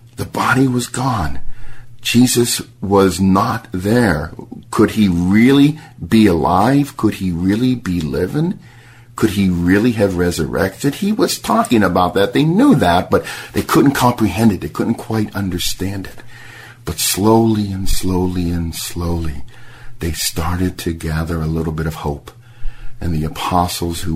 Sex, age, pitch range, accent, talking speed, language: male, 50-69, 85-115 Hz, American, 150 wpm, Ukrainian